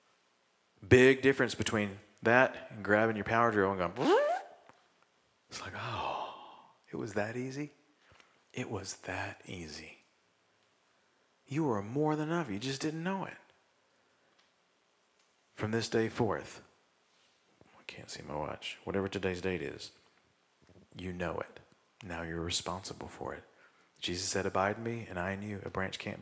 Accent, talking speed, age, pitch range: American, 145 wpm, 40-59, 85-115 Hz